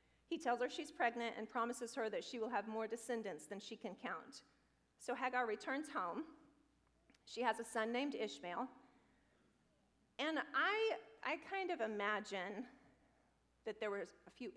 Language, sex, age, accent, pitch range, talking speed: English, female, 40-59, American, 205-250 Hz, 160 wpm